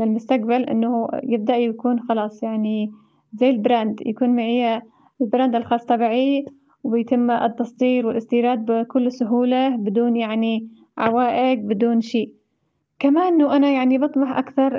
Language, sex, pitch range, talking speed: Arabic, female, 230-265 Hz, 120 wpm